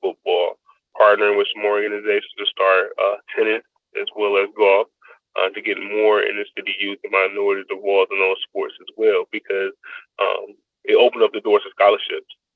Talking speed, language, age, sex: 175 wpm, Polish, 20-39, male